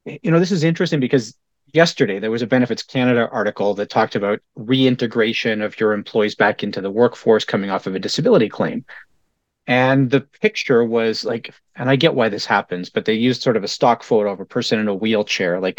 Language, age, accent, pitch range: English, 30-49, American, 105-135 Hz